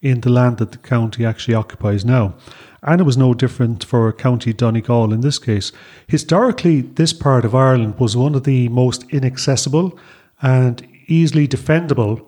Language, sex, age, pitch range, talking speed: English, male, 40-59, 120-145 Hz, 165 wpm